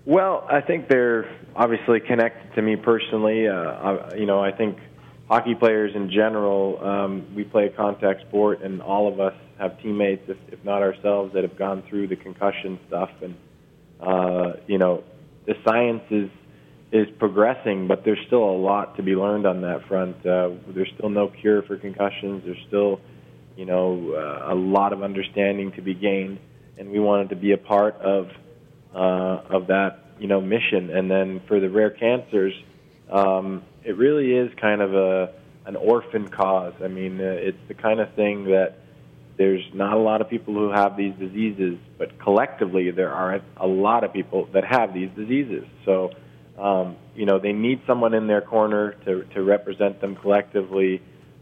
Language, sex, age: English, male, 20-39